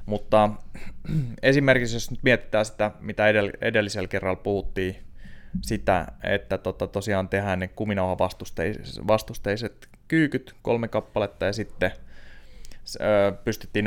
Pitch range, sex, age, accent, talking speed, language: 95-115 Hz, male, 20-39, native, 115 wpm, Finnish